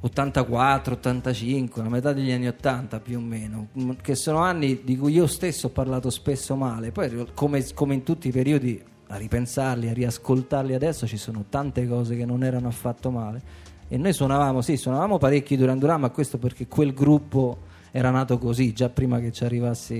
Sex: male